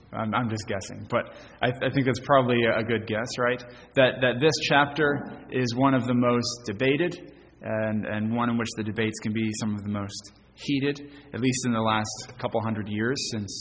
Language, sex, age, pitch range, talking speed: English, male, 20-39, 110-140 Hz, 205 wpm